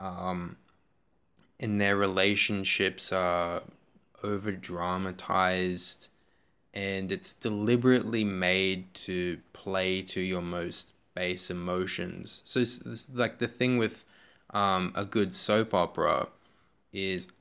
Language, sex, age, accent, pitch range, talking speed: English, male, 20-39, Australian, 95-120 Hz, 105 wpm